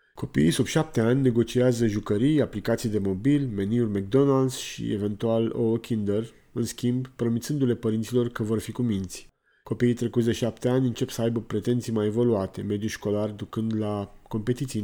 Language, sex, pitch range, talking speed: Romanian, male, 105-125 Hz, 160 wpm